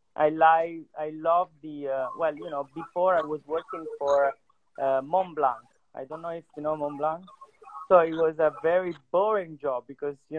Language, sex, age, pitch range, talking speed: English, male, 30-49, 145-175 Hz, 195 wpm